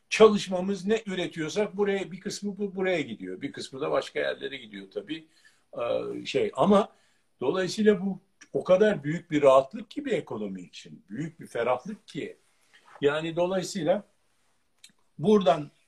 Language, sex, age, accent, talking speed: Turkish, male, 60-79, native, 135 wpm